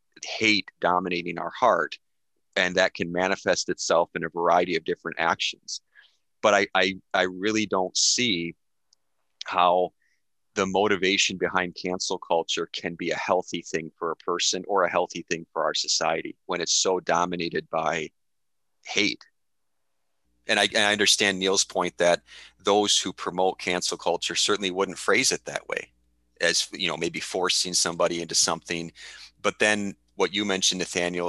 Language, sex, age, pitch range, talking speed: English, male, 30-49, 75-95 Hz, 155 wpm